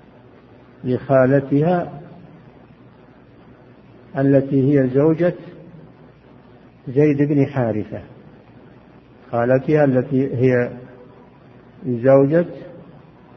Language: Arabic